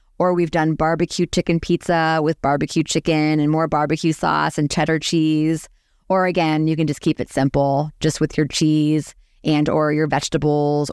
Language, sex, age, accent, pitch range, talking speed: English, female, 30-49, American, 155-180 Hz, 175 wpm